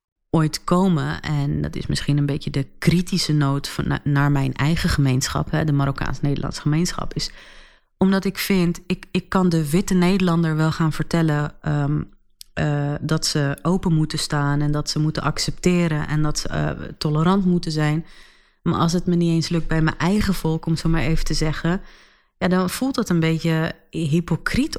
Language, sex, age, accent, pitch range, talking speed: Dutch, female, 30-49, Dutch, 150-170 Hz, 185 wpm